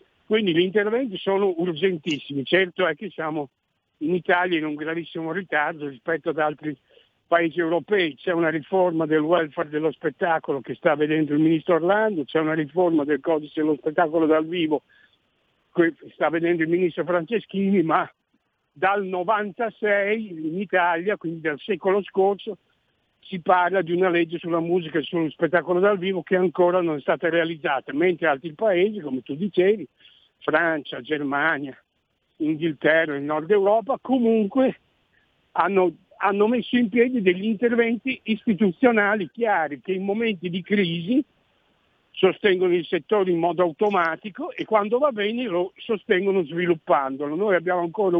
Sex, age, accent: male, 60-79, native